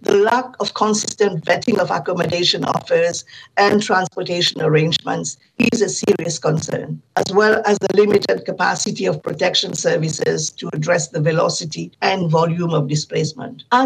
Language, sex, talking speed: Finnish, female, 145 wpm